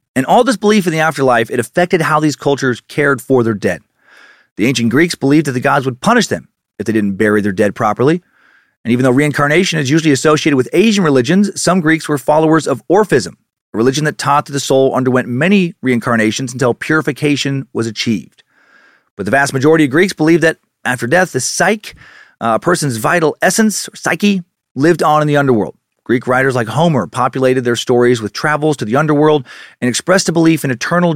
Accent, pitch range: American, 125-160 Hz